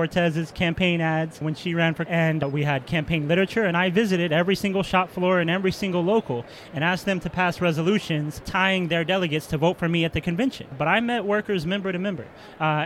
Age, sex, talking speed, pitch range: 30-49, male, 225 wpm, 155-185 Hz